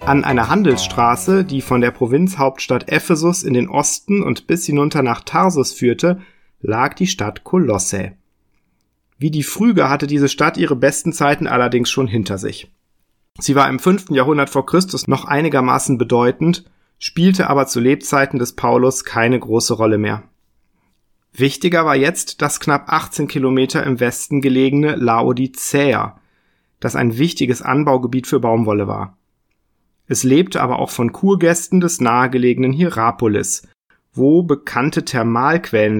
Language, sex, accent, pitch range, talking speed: German, male, German, 120-150 Hz, 140 wpm